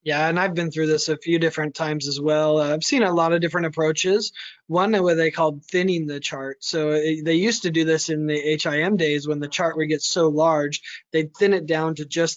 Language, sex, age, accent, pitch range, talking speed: English, male, 20-39, American, 155-175 Hz, 245 wpm